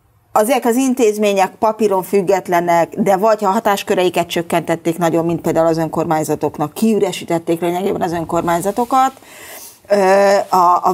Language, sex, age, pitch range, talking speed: Hungarian, female, 30-49, 170-220 Hz, 115 wpm